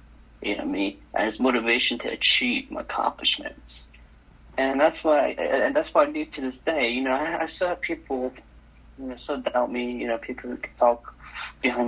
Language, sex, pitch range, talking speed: English, male, 115-155 Hz, 190 wpm